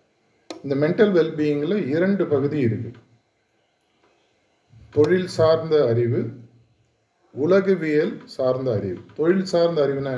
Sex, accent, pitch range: male, native, 115-150 Hz